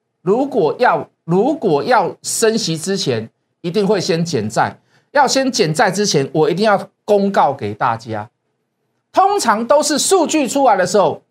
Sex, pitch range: male, 170-250 Hz